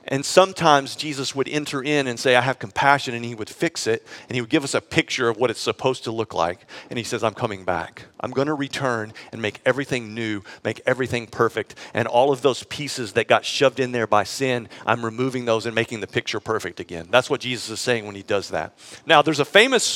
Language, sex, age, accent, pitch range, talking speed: English, male, 50-69, American, 130-165 Hz, 245 wpm